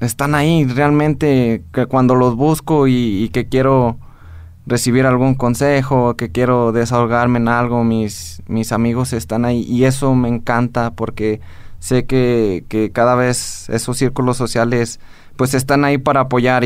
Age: 20-39